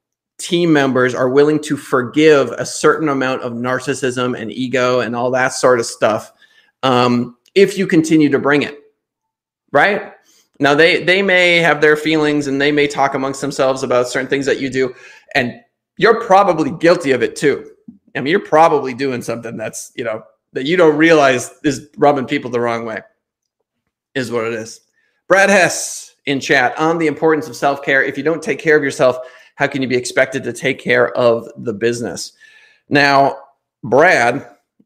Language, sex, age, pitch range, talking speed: English, male, 20-39, 125-160 Hz, 180 wpm